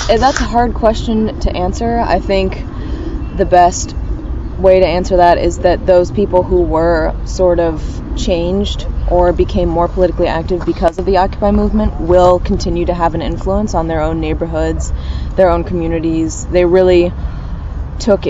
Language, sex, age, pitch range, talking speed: German, female, 20-39, 165-185 Hz, 160 wpm